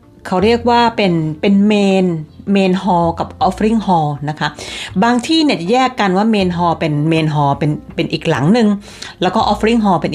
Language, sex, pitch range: Thai, female, 155-215 Hz